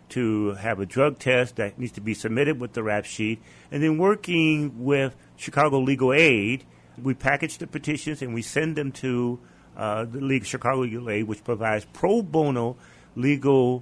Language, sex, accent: English, male, American